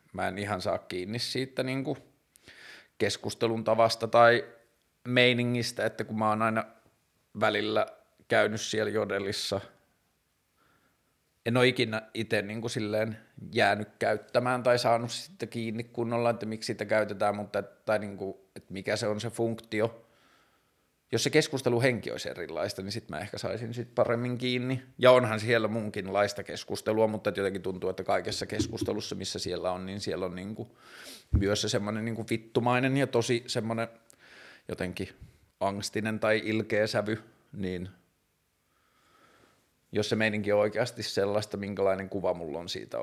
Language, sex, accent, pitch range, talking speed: Finnish, male, native, 100-115 Hz, 145 wpm